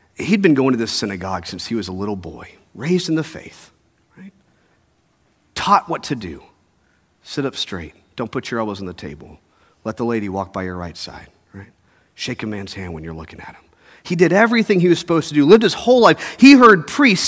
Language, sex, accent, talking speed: English, male, American, 220 wpm